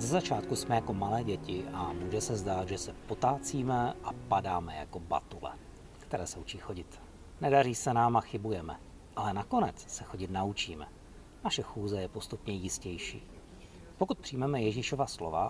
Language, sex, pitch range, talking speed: Czech, male, 95-130 Hz, 155 wpm